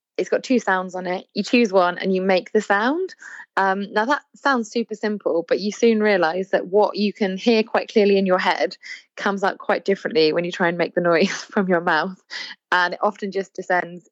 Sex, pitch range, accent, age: female, 170-215 Hz, British, 20-39